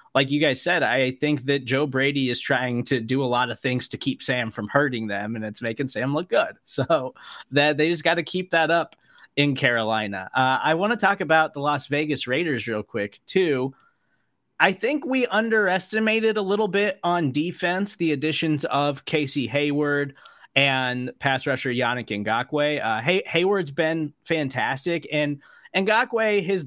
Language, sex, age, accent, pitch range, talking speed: English, male, 20-39, American, 130-165 Hz, 180 wpm